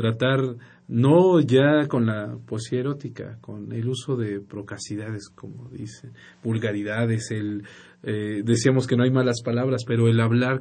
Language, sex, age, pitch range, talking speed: Spanish, male, 50-69, 110-130 Hz, 145 wpm